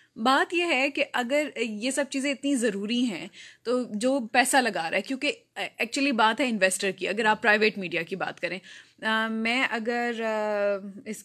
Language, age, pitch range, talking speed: Urdu, 20-39, 195-245 Hz, 175 wpm